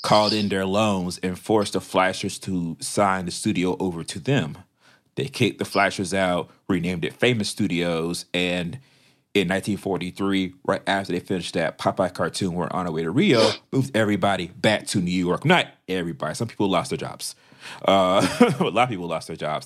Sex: male